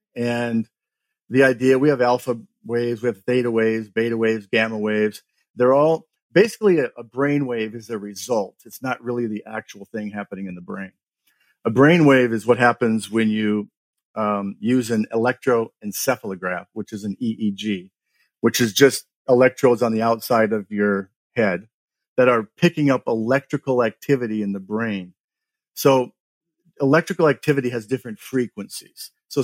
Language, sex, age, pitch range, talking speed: English, male, 50-69, 110-130 Hz, 155 wpm